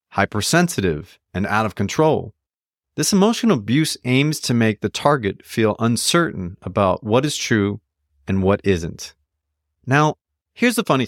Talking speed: 140 wpm